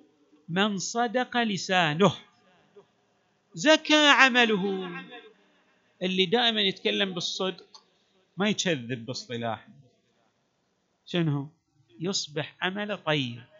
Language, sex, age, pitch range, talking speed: Arabic, male, 50-69, 160-225 Hz, 70 wpm